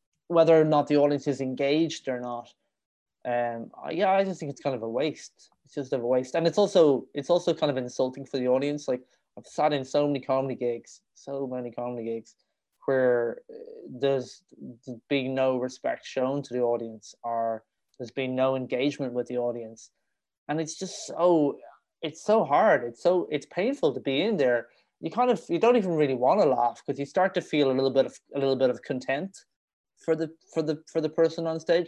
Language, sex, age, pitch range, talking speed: English, male, 20-39, 125-160 Hz, 210 wpm